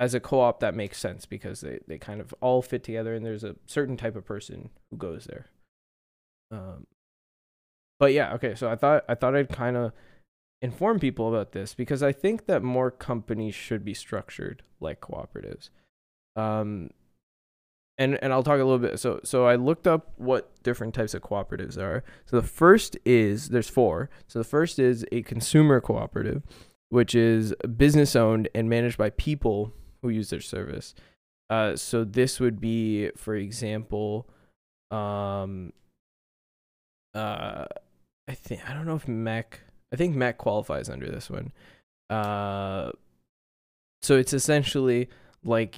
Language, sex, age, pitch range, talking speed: English, male, 10-29, 105-130 Hz, 160 wpm